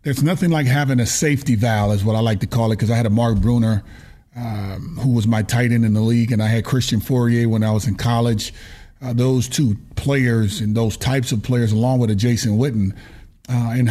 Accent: American